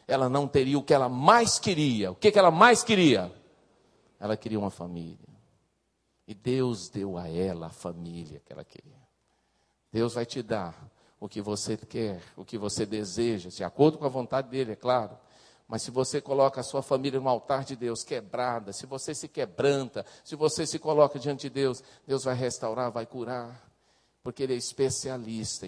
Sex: male